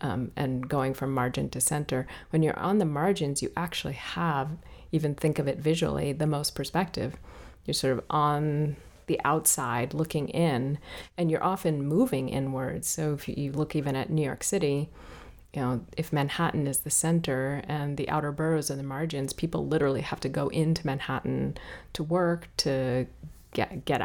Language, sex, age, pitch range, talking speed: English, female, 30-49, 135-155 Hz, 175 wpm